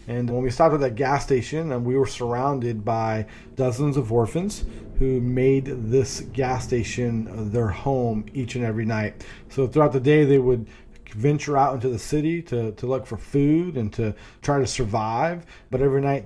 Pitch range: 115-140 Hz